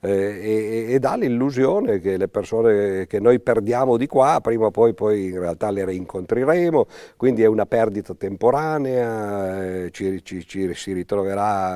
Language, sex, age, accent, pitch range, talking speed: Italian, male, 50-69, native, 90-120 Hz, 160 wpm